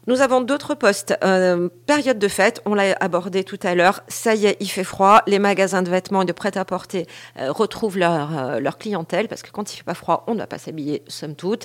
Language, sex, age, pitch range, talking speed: French, female, 40-59, 150-195 Hz, 240 wpm